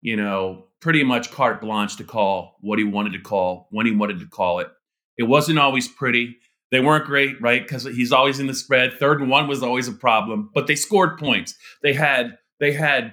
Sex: male